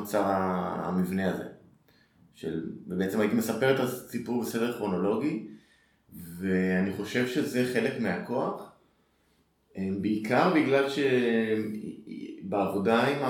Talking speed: 80 wpm